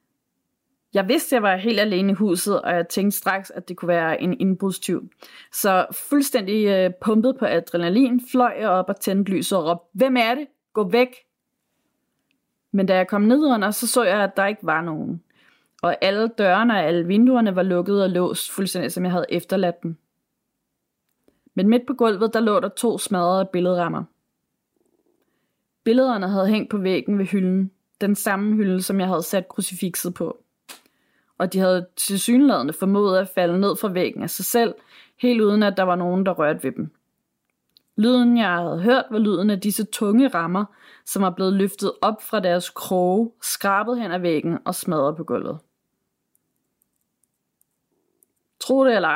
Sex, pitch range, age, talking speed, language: female, 180-220 Hz, 30-49, 180 wpm, Danish